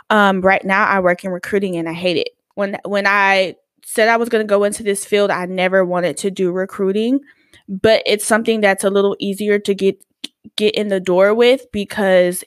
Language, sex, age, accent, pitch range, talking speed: English, female, 10-29, American, 185-215 Hz, 210 wpm